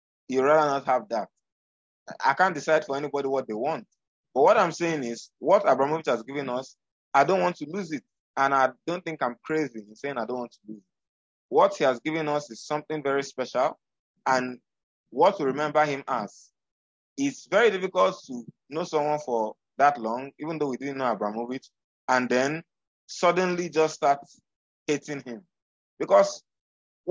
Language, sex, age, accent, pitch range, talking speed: English, male, 20-39, Nigerian, 125-165 Hz, 180 wpm